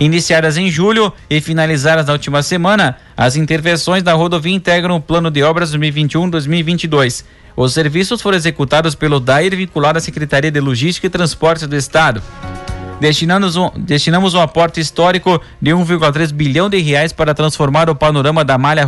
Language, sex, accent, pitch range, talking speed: Portuguese, male, Brazilian, 145-175 Hz, 160 wpm